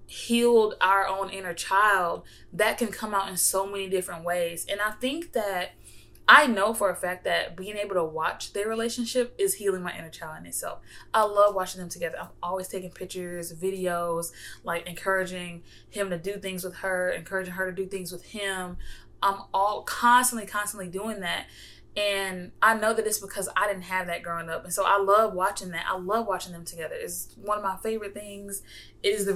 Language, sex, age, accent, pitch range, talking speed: English, female, 20-39, American, 175-210 Hz, 205 wpm